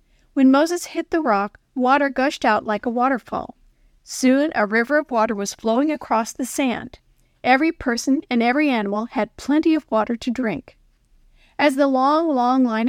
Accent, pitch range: American, 225-280 Hz